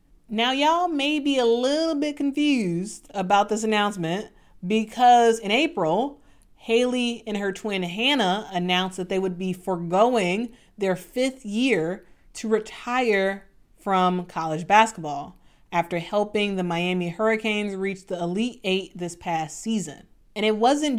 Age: 30-49